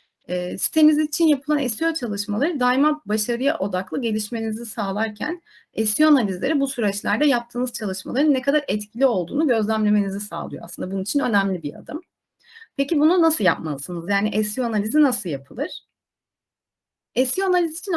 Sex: female